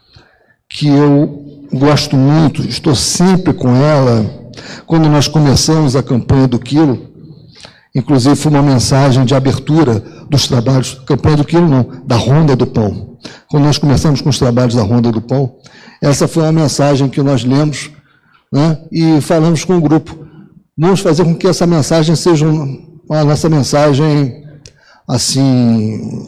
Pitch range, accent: 130-165 Hz, Brazilian